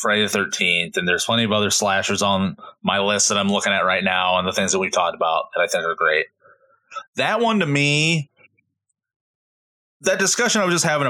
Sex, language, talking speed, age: male, English, 215 wpm, 30-49